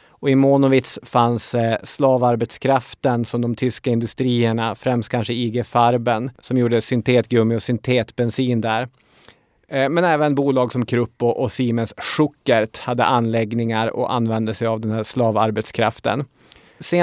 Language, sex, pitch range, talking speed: English, male, 115-130 Hz, 130 wpm